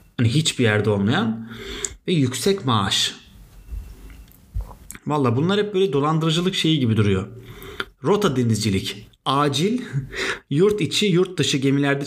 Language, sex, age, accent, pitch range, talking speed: Turkish, male, 30-49, native, 115-165 Hz, 115 wpm